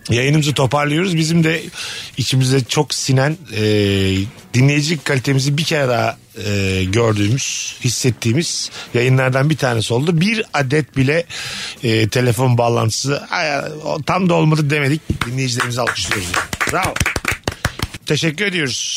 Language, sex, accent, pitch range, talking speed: Turkish, male, native, 115-150 Hz, 115 wpm